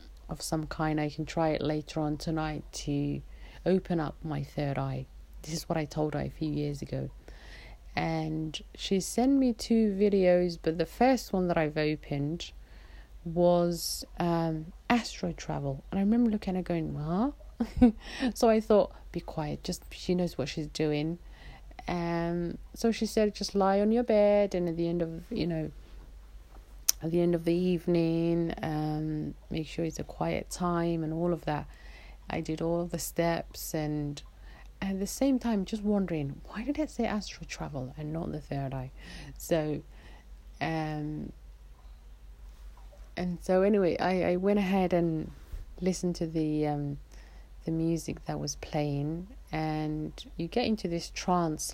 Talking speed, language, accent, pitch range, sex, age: 165 wpm, English, British, 150-180 Hz, female, 30-49